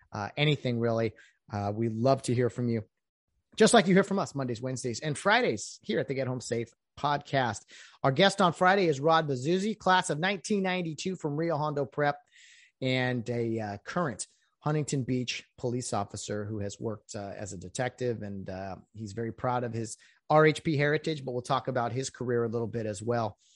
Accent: American